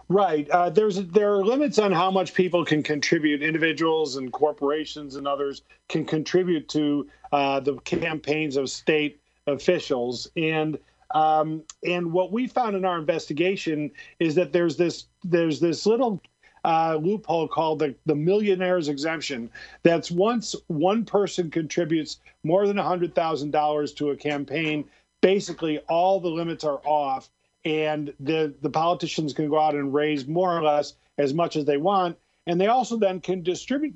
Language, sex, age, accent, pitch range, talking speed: English, male, 40-59, American, 150-185 Hz, 165 wpm